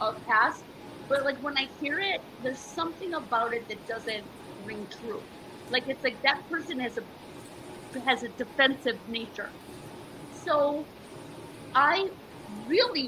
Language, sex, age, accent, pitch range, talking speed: English, female, 30-49, American, 225-280 Hz, 135 wpm